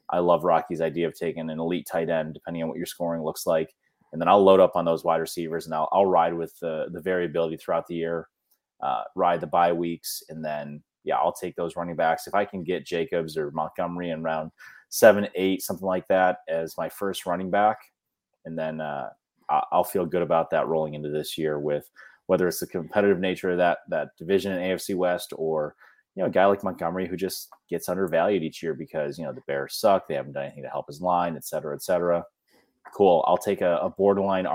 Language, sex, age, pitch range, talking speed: English, male, 30-49, 80-90 Hz, 230 wpm